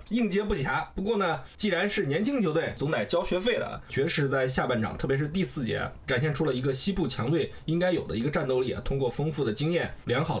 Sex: male